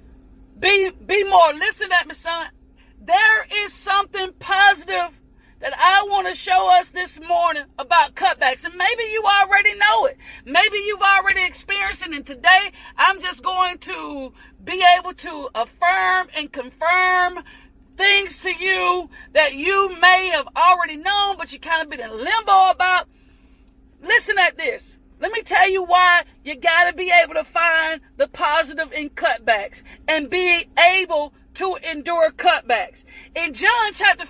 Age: 40-59